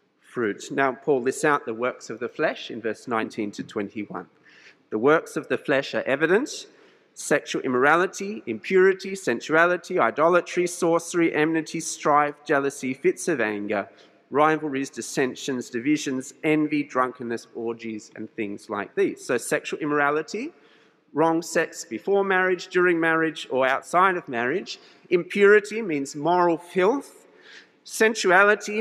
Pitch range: 150-200 Hz